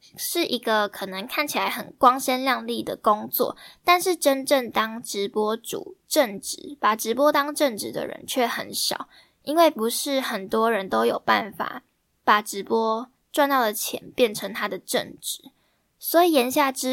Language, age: Chinese, 10-29